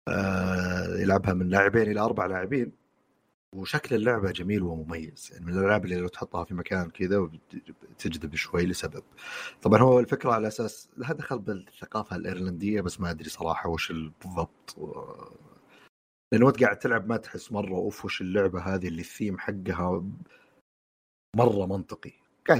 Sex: male